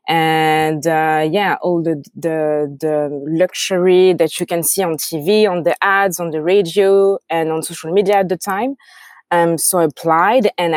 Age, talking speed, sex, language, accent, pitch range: 20-39, 180 wpm, female, English, French, 160-190 Hz